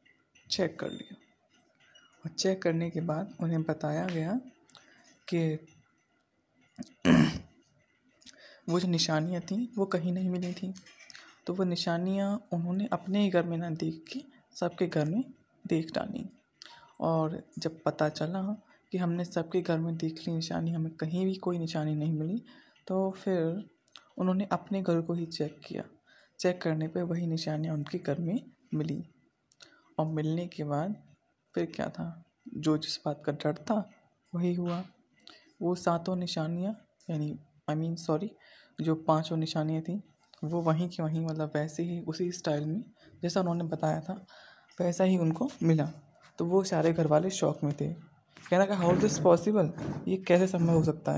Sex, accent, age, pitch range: female, native, 20-39, 160-185 Hz